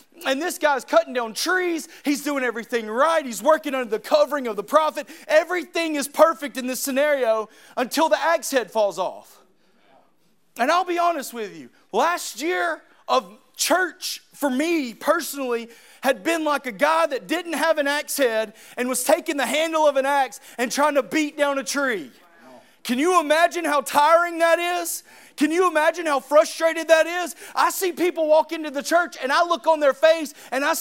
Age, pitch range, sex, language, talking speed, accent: 30-49, 280-335 Hz, male, English, 190 wpm, American